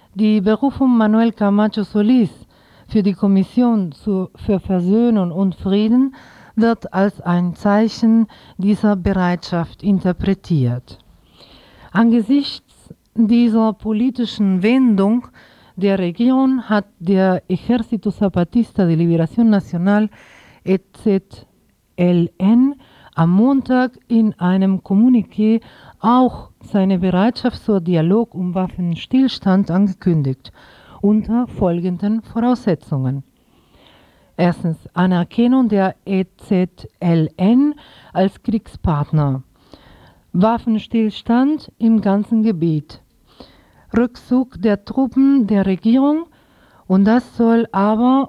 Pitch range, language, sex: 180-230 Hz, German, female